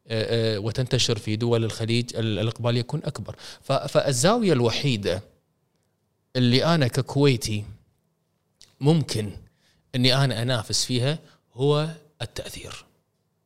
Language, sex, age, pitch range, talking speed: Arabic, male, 20-39, 105-130 Hz, 90 wpm